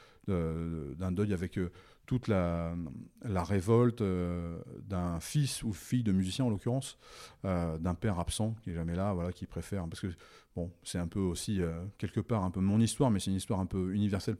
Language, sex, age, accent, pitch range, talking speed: French, male, 30-49, French, 90-115 Hz, 180 wpm